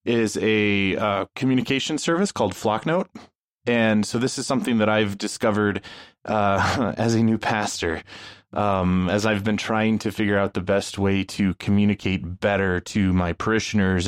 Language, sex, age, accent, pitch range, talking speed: English, male, 20-39, American, 95-115 Hz, 160 wpm